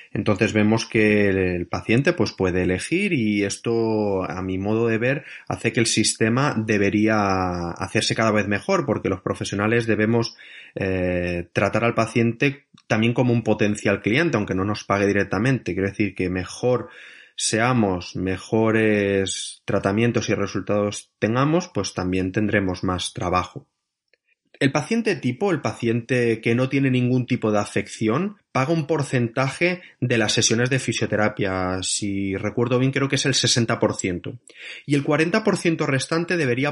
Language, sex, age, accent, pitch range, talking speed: Spanish, male, 30-49, Spanish, 100-130 Hz, 145 wpm